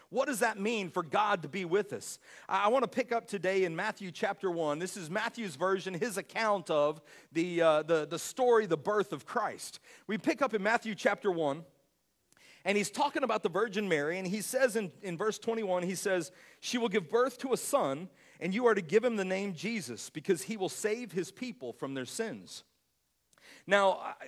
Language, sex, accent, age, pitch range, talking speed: English, male, American, 40-59, 175-225 Hz, 210 wpm